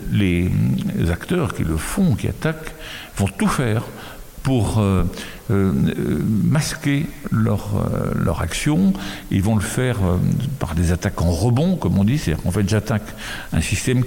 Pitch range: 90-120 Hz